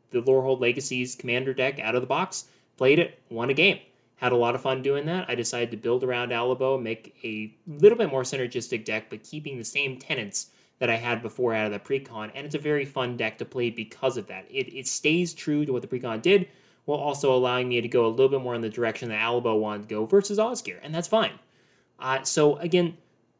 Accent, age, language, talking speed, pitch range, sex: American, 20-39, English, 240 wpm, 115-140 Hz, male